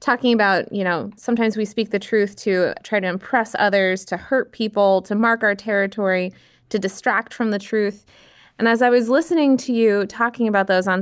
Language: English